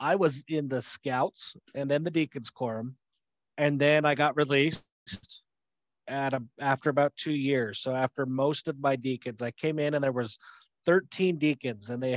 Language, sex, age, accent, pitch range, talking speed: English, male, 30-49, American, 125-160 Hz, 180 wpm